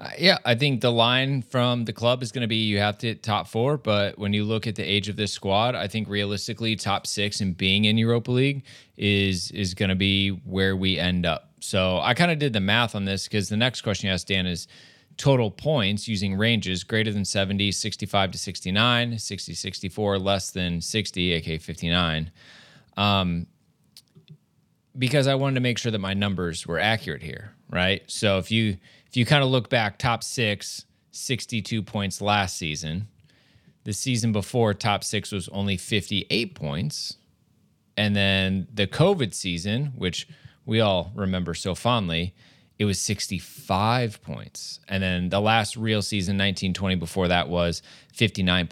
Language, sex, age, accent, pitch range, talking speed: English, male, 20-39, American, 95-120 Hz, 180 wpm